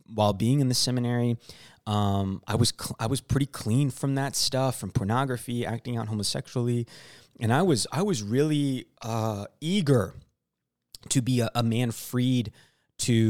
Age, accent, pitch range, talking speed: 20-39, American, 110-145 Hz, 160 wpm